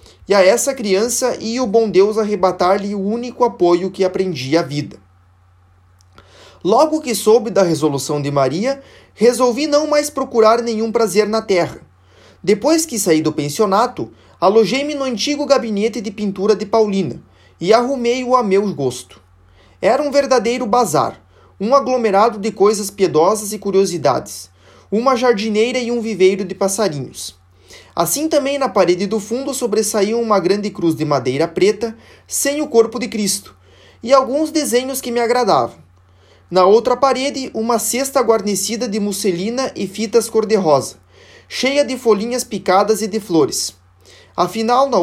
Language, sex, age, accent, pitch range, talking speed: Portuguese, male, 20-39, Brazilian, 165-245 Hz, 150 wpm